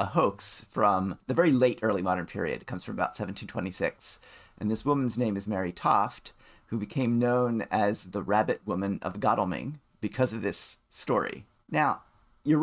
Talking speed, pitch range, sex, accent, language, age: 170 wpm, 100-125 Hz, male, American, English, 30-49